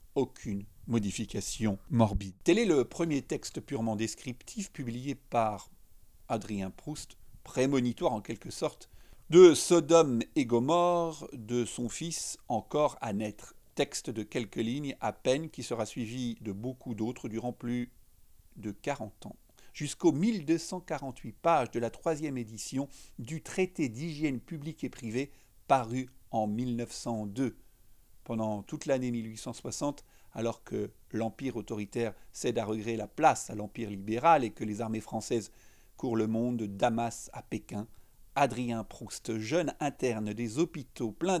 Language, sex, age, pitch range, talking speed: French, male, 50-69, 110-135 Hz, 140 wpm